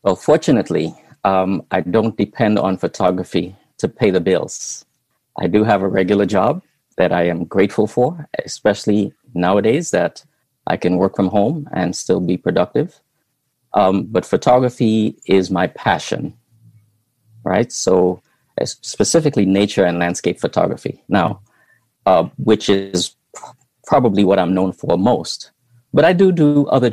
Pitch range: 95-120 Hz